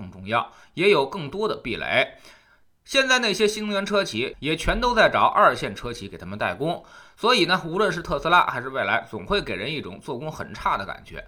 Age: 20-39